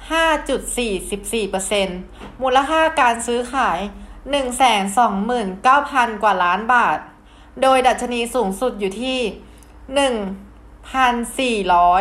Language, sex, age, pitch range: Thai, female, 20-39, 210-270 Hz